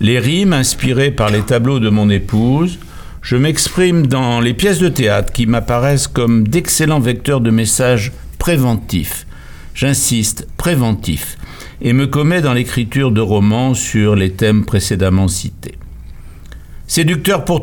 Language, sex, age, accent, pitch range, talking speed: French, male, 60-79, French, 105-145 Hz, 135 wpm